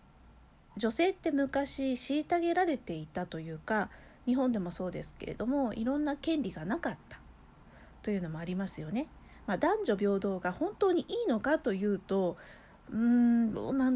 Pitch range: 185-285 Hz